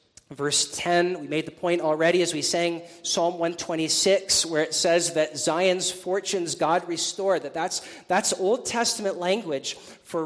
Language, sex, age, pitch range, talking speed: English, male, 40-59, 155-200 Hz, 160 wpm